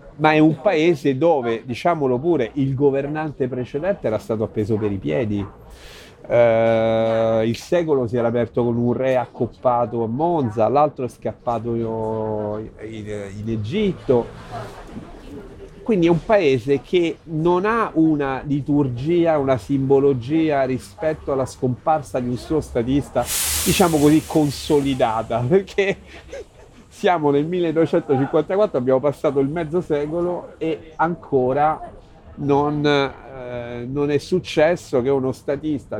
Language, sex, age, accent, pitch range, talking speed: Italian, male, 40-59, native, 120-160 Hz, 125 wpm